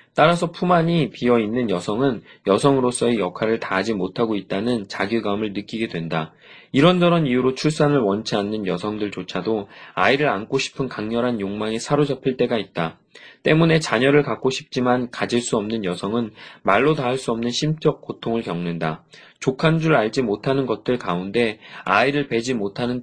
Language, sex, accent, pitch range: Korean, male, native, 110-145 Hz